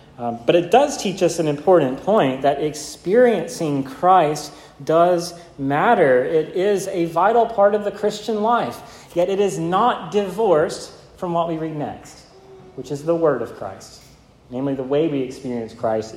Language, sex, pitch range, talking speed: English, male, 120-155 Hz, 165 wpm